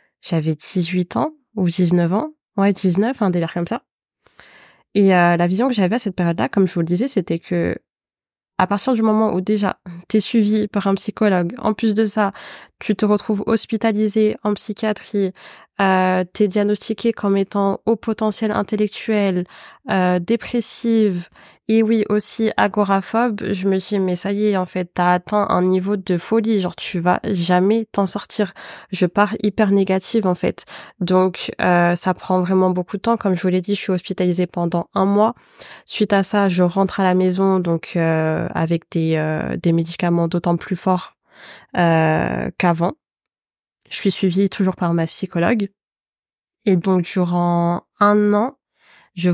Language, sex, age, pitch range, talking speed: French, female, 20-39, 180-210 Hz, 175 wpm